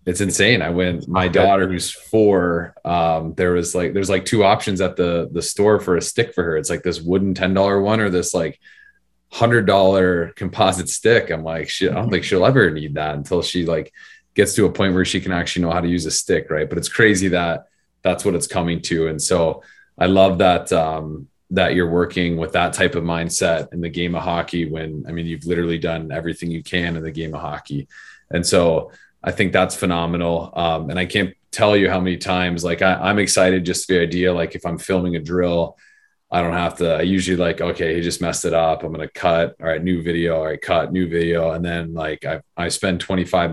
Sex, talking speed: male, 235 wpm